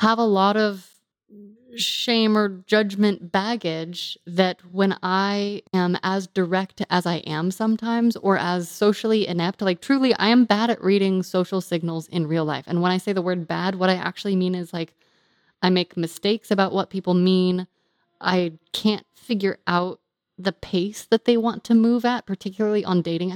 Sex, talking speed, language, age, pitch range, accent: female, 175 wpm, English, 20-39, 180-220 Hz, American